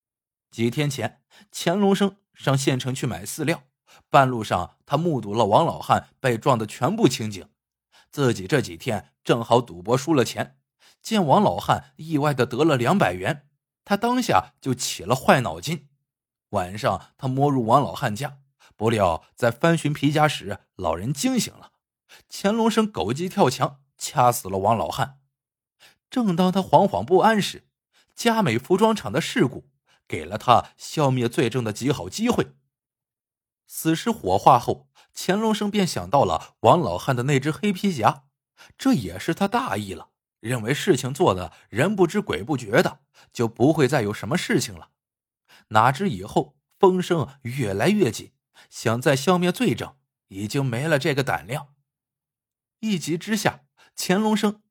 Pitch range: 125-180 Hz